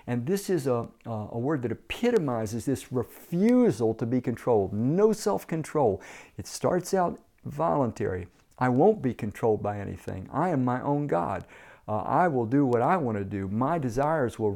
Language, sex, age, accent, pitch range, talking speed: English, male, 50-69, American, 115-160 Hz, 180 wpm